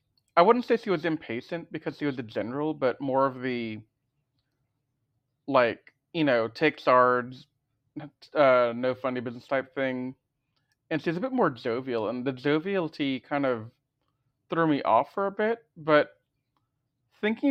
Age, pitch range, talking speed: 30-49, 125-145 Hz, 155 wpm